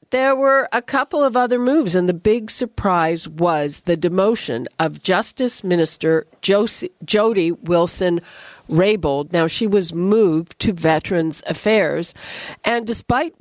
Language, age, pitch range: English, 50-69, 170-230 Hz